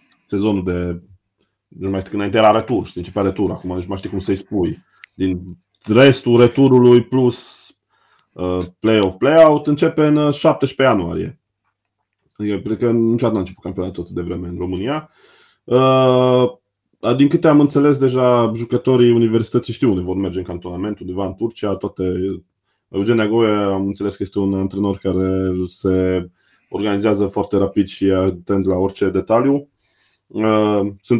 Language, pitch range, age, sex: Romanian, 95-115 Hz, 20-39, male